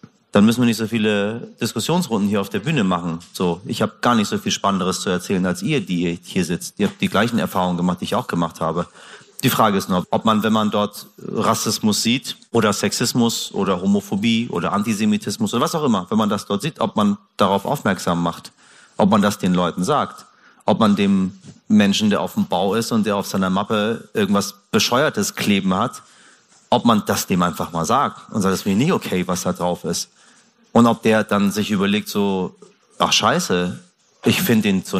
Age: 40-59